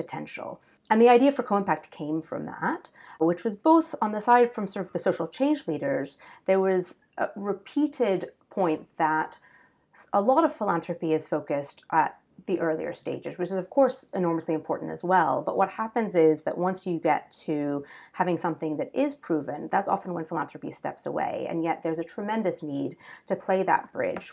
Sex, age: female, 40-59